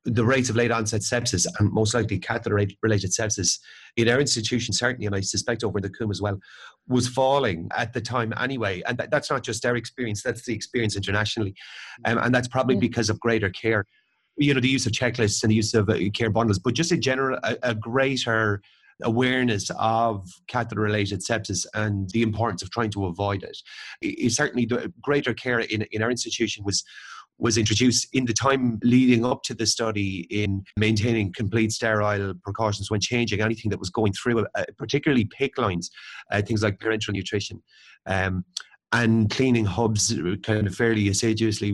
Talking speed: 185 wpm